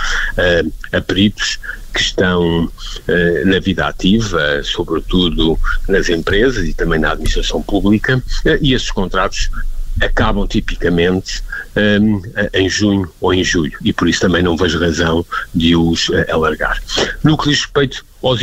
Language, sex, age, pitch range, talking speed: Portuguese, male, 50-69, 85-105 Hz, 150 wpm